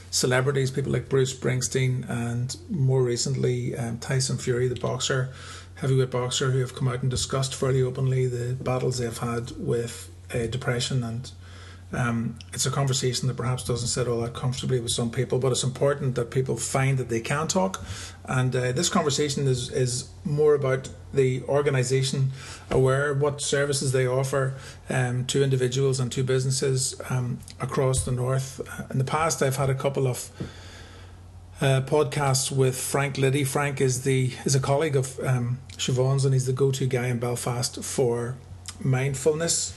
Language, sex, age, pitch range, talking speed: English, male, 30-49, 120-135 Hz, 175 wpm